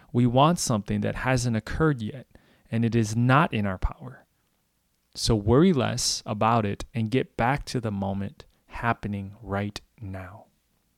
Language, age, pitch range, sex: English, 20-39, 95-115 Hz, male